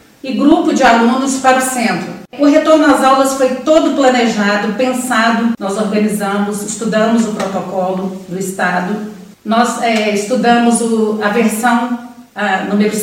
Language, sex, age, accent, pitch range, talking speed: Portuguese, female, 40-59, Brazilian, 210-260 Hz, 125 wpm